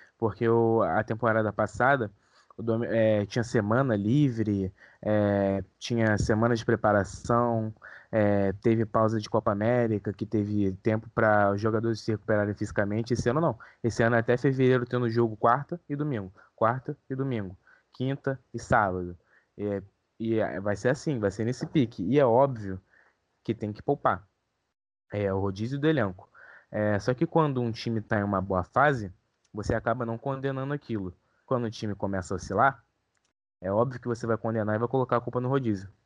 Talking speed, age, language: 160 wpm, 20-39, Portuguese